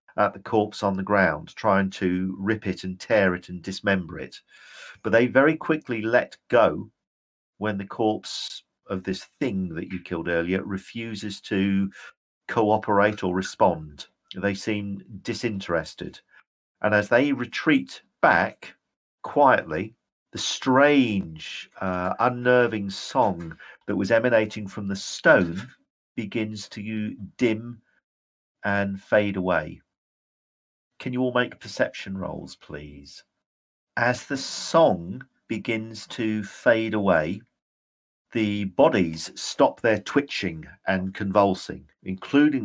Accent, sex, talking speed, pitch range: British, male, 120 wpm, 90-110 Hz